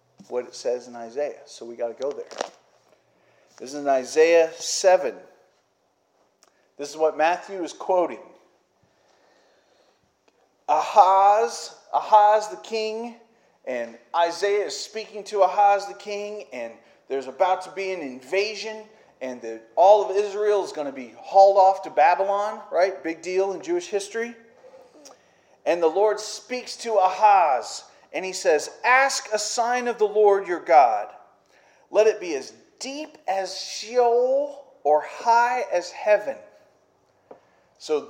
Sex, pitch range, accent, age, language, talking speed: male, 165-220 Hz, American, 40-59, English, 140 wpm